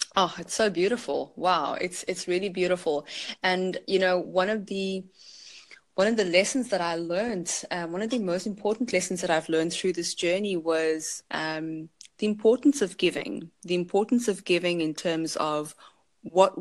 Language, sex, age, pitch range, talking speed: English, female, 20-39, 165-195 Hz, 175 wpm